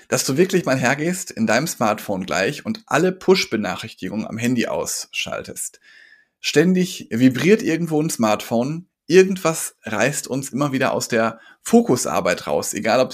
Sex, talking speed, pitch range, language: male, 140 wpm, 115-185 Hz, German